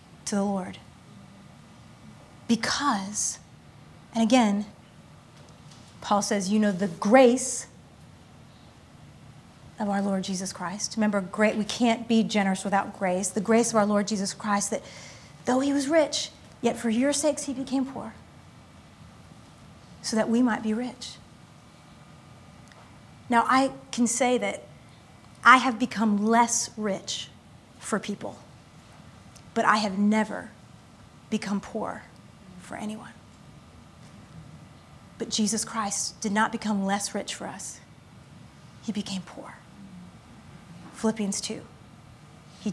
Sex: female